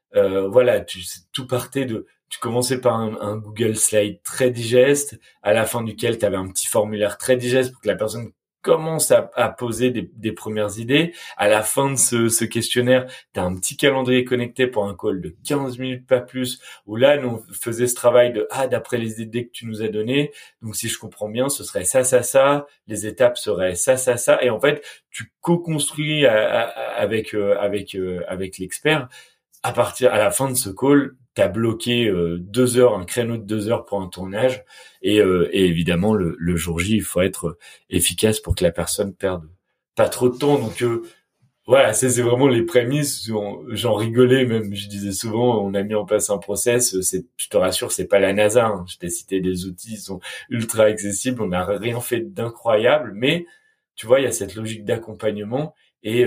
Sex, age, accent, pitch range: male, 30-49, French, 100-130 Hz